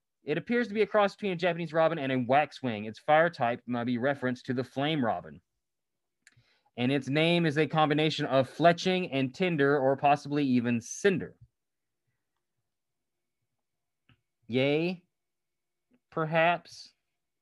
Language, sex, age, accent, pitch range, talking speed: English, male, 20-39, American, 135-185 Hz, 135 wpm